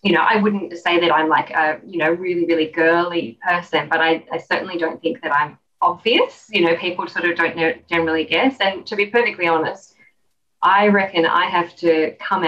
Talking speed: 205 wpm